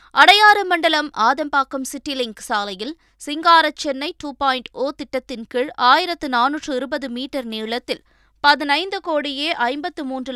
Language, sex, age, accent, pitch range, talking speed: Tamil, female, 20-39, native, 240-315 Hz, 120 wpm